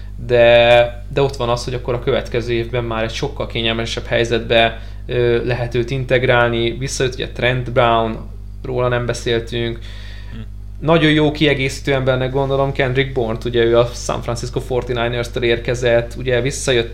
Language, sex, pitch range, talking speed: Hungarian, male, 110-125 Hz, 145 wpm